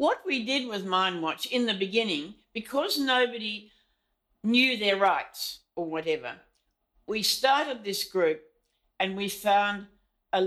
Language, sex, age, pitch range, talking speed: English, female, 50-69, 170-220 Hz, 130 wpm